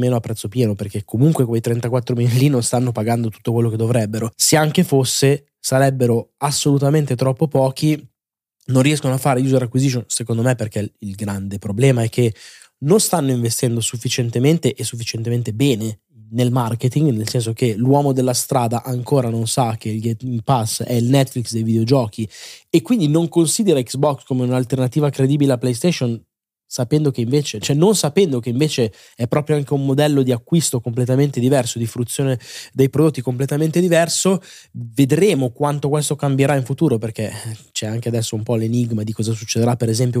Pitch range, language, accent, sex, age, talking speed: 115-140 Hz, Italian, native, male, 20-39, 170 wpm